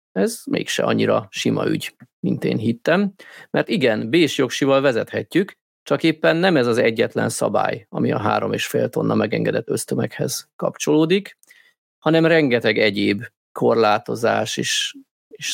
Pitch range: 125-195 Hz